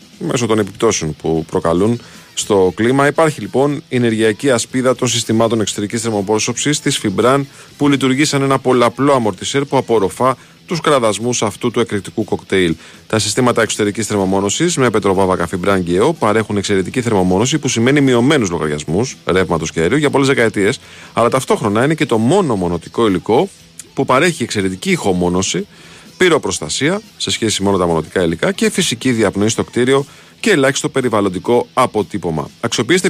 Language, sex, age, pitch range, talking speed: Greek, male, 40-59, 100-135 Hz, 150 wpm